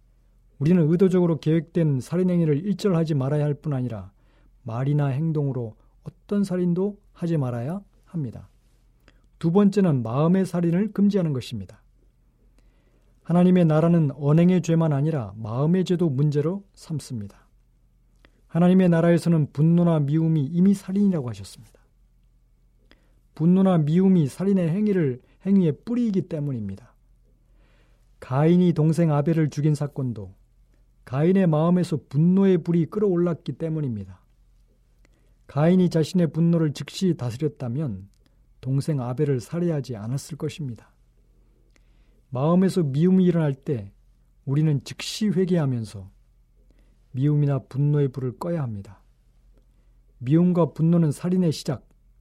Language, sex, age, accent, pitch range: Korean, male, 40-59, native, 130-175 Hz